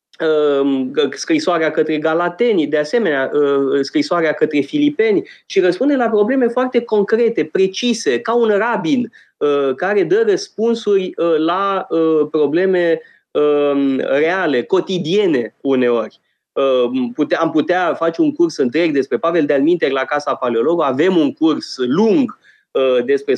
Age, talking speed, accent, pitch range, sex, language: 20-39, 115 wpm, native, 145-225 Hz, male, Romanian